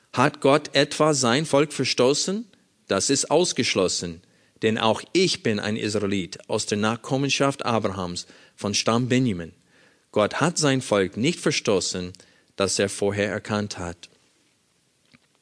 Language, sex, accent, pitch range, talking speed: German, male, German, 110-140 Hz, 130 wpm